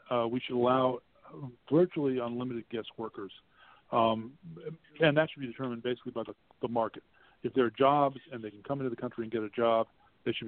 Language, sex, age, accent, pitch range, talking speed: English, male, 40-59, American, 115-130 Hz, 205 wpm